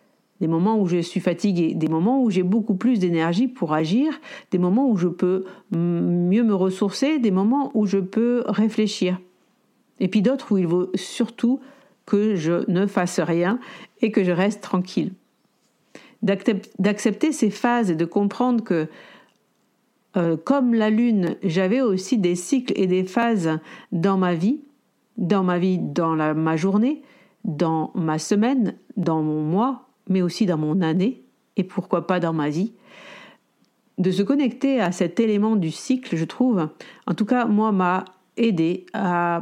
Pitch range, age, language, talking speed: 180-230 Hz, 50-69, French, 165 wpm